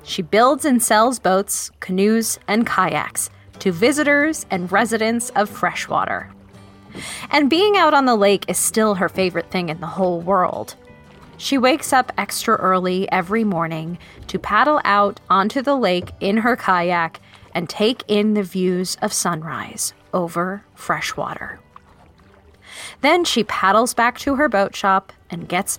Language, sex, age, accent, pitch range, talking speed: English, female, 20-39, American, 180-245 Hz, 150 wpm